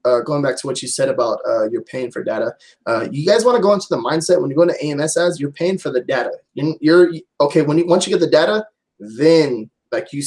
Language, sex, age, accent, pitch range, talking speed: English, male, 20-39, American, 145-185 Hz, 270 wpm